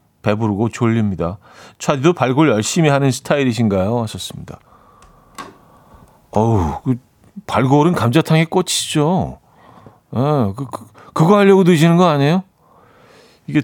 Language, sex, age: Korean, male, 40-59